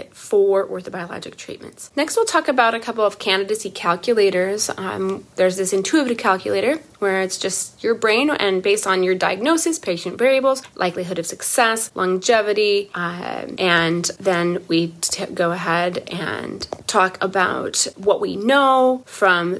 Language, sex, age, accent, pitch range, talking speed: English, female, 30-49, American, 190-260 Hz, 140 wpm